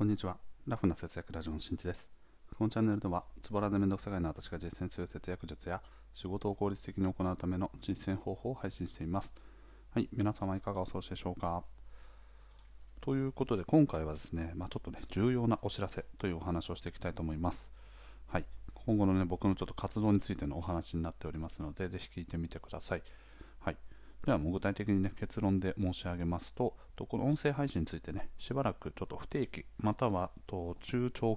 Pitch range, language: 85-105 Hz, Japanese